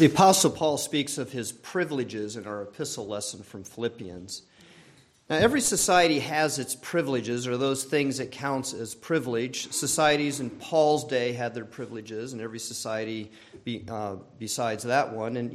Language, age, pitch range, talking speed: English, 50-69, 120-150 Hz, 160 wpm